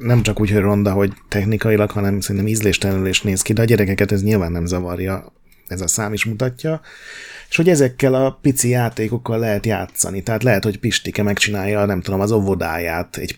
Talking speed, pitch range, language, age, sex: 190 wpm, 95-120 Hz, Hungarian, 30-49, male